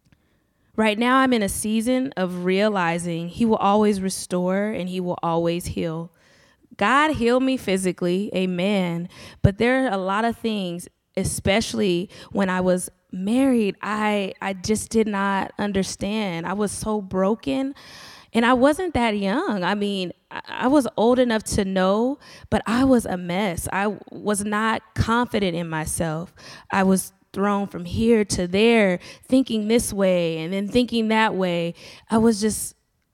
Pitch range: 185-235 Hz